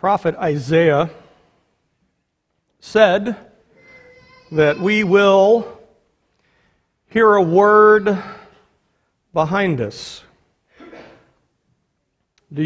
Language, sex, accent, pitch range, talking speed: English, male, American, 145-190 Hz, 55 wpm